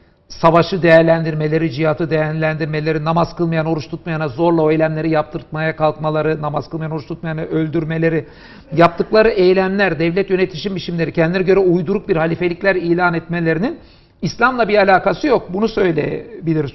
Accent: native